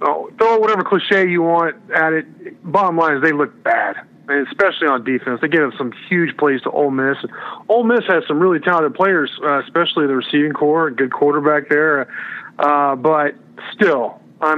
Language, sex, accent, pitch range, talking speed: English, male, American, 135-170 Hz, 195 wpm